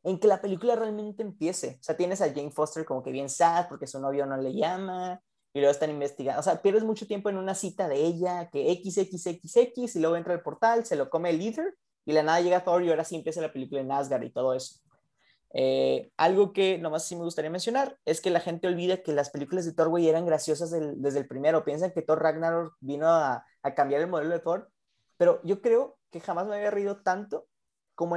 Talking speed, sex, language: 235 wpm, male, Spanish